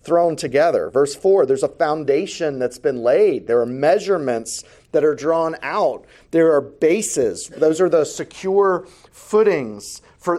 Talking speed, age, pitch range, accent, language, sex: 150 wpm, 40-59, 155-220 Hz, American, English, male